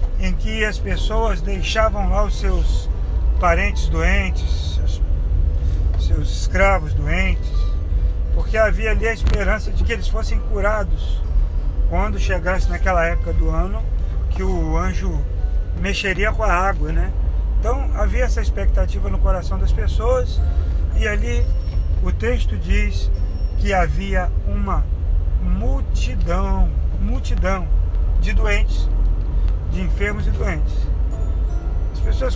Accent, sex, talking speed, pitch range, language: Brazilian, male, 120 wpm, 75-85 Hz, Portuguese